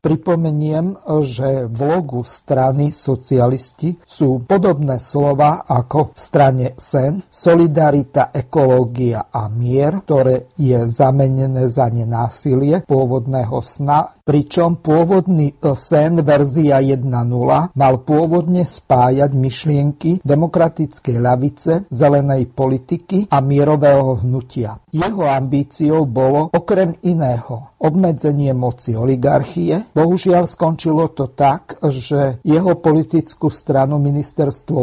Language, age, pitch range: Slovak, 50-69, 130-160 Hz